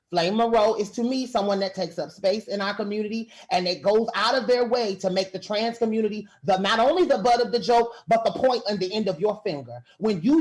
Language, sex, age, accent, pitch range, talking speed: English, male, 30-49, American, 195-250 Hz, 250 wpm